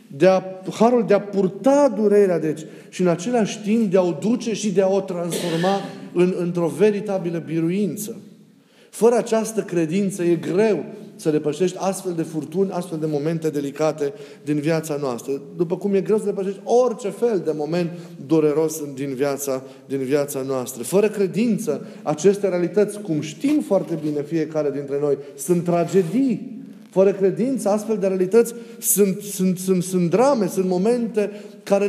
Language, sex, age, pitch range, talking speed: Romanian, male, 30-49, 155-210 Hz, 155 wpm